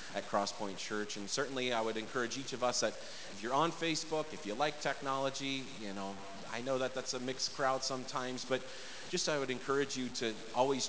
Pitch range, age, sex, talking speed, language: 100-130 Hz, 30-49, male, 210 wpm, English